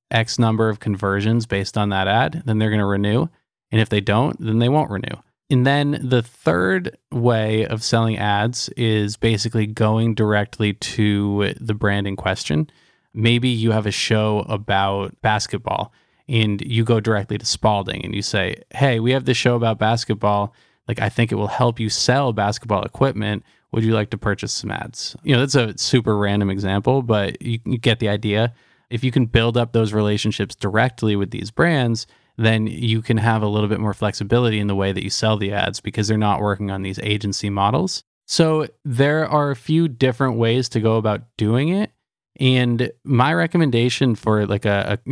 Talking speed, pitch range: 195 wpm, 105-120 Hz